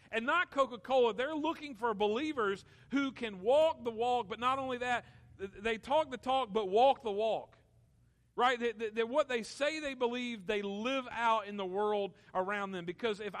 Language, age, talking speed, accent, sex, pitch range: English, 40-59, 180 wpm, American, male, 210-260 Hz